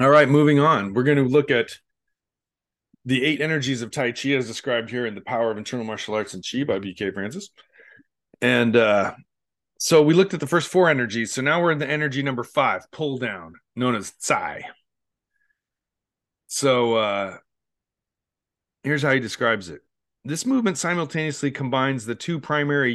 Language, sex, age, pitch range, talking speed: English, male, 40-59, 115-145 Hz, 175 wpm